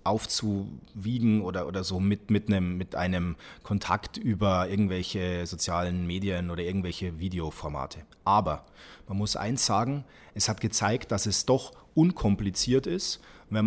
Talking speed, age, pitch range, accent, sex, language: 130 wpm, 30-49, 95-125 Hz, German, male, German